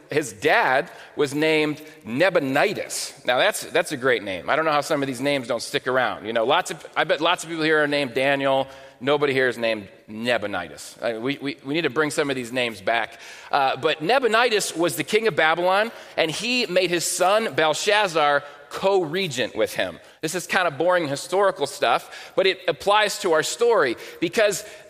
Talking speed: 200 wpm